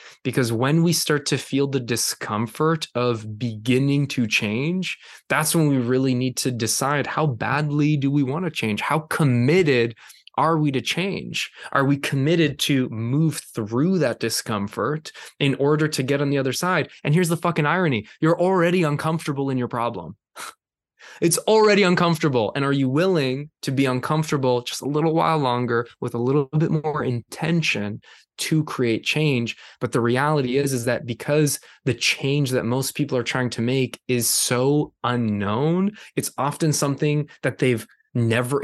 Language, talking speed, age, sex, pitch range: English, 170 wpm, 20-39, male, 120-155 Hz